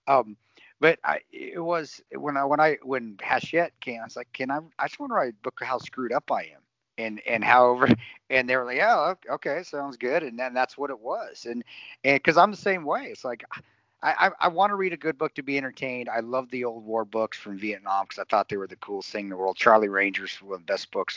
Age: 50-69